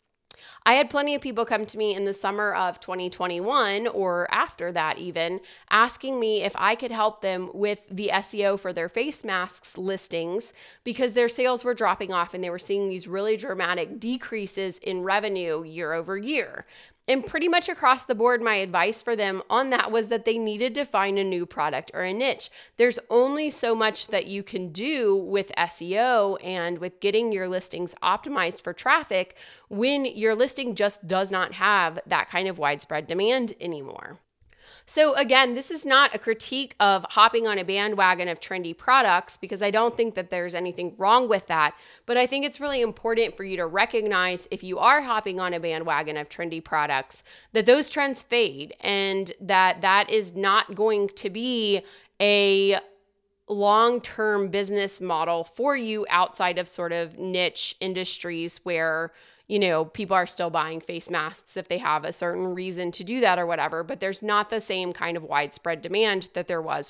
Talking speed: 185 wpm